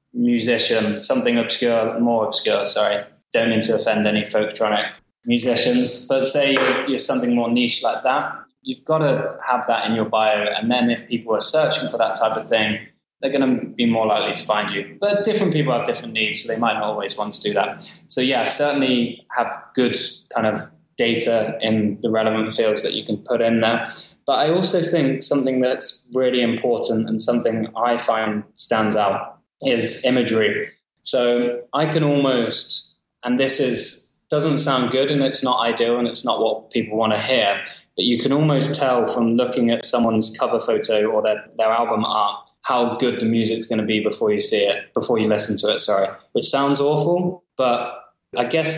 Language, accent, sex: English, British, male